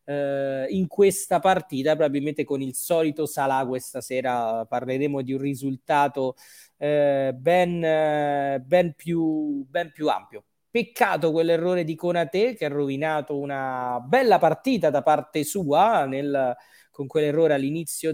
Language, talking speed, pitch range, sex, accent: Italian, 130 wpm, 135-165 Hz, male, native